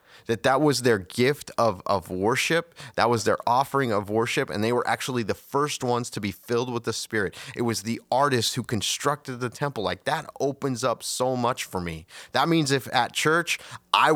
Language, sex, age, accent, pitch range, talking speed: English, male, 30-49, American, 110-135 Hz, 210 wpm